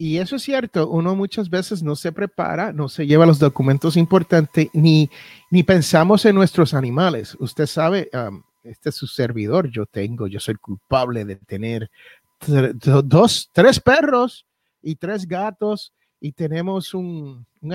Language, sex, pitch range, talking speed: Spanish, male, 135-190 Hz, 160 wpm